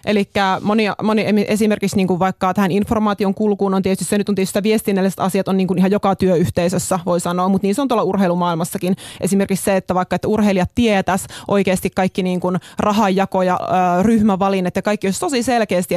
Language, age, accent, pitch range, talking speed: Finnish, 20-39, native, 185-210 Hz, 175 wpm